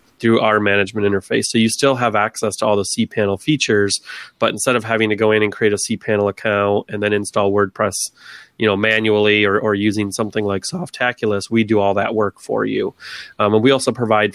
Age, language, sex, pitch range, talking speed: 30-49, English, male, 100-115 Hz, 215 wpm